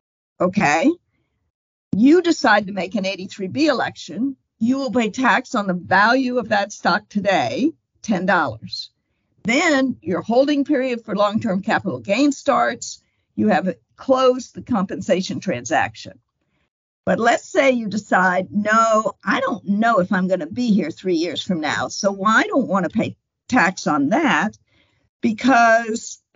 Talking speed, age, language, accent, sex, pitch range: 150 wpm, 50-69, English, American, female, 185-260 Hz